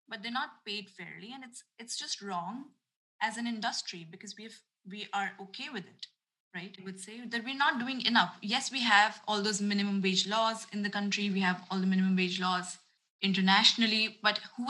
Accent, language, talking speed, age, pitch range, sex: Indian, English, 210 wpm, 20-39, 185-220 Hz, female